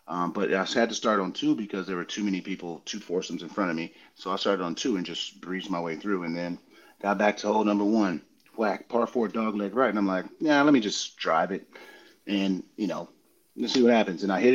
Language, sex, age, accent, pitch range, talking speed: English, male, 30-49, American, 90-105 Hz, 265 wpm